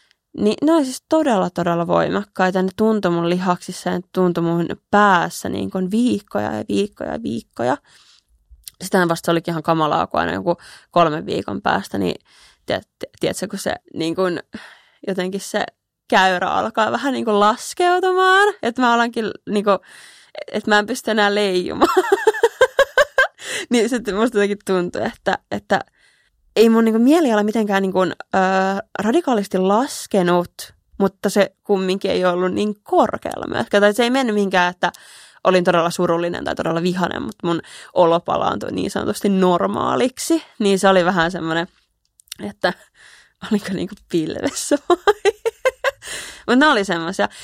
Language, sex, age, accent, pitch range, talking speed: Finnish, female, 20-39, native, 180-235 Hz, 145 wpm